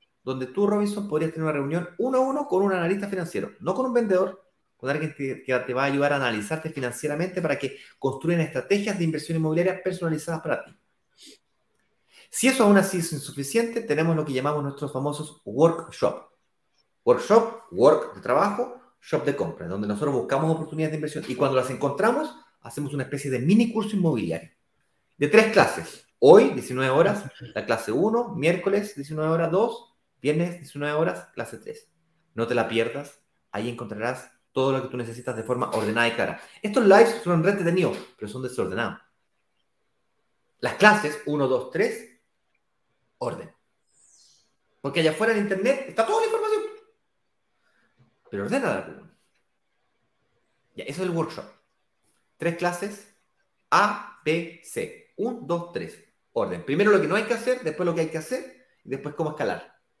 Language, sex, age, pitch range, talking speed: Spanish, male, 30-49, 140-205 Hz, 165 wpm